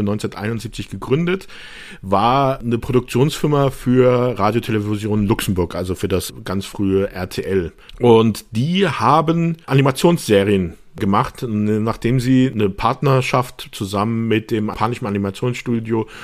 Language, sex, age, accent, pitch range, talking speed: German, male, 50-69, German, 100-125 Hz, 105 wpm